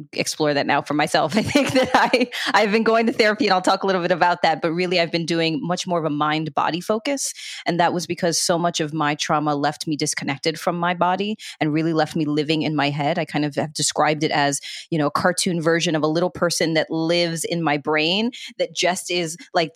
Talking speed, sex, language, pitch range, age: 245 wpm, female, English, 155-220 Hz, 30-49